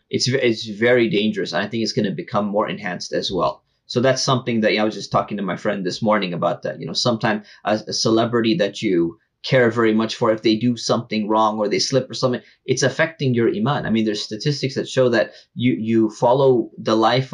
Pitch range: 110-125 Hz